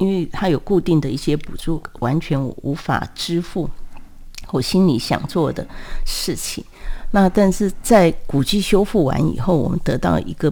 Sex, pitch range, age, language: female, 145-185 Hz, 50-69, Chinese